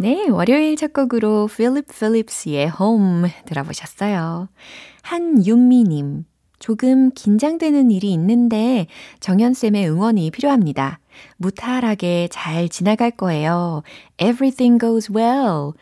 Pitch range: 160-235 Hz